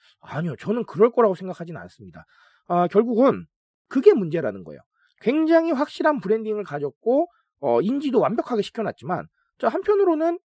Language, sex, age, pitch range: Korean, male, 40-59, 175-285 Hz